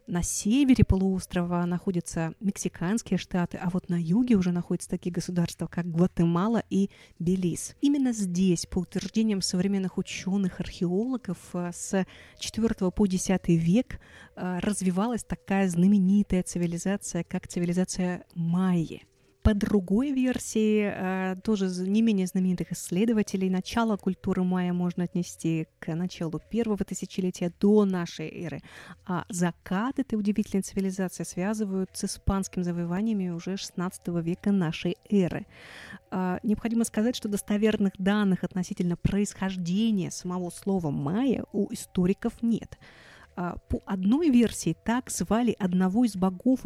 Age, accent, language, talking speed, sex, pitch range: 30-49, native, Russian, 115 wpm, female, 180-210 Hz